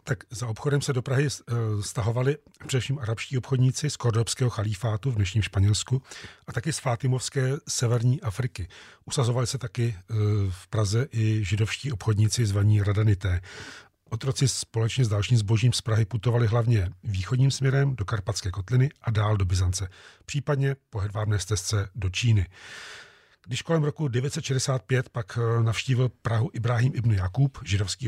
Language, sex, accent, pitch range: Czech, male, native, 110-130 Hz